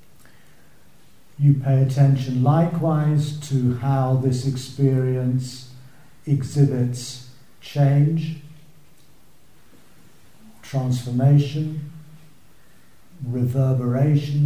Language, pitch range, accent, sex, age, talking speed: English, 125-150 Hz, British, male, 50-69, 50 wpm